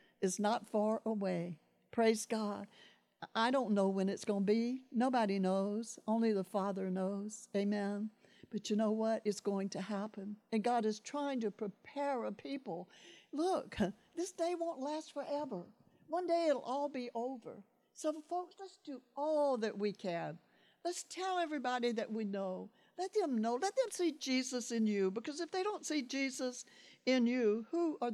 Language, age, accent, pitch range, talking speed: English, 60-79, American, 195-260 Hz, 175 wpm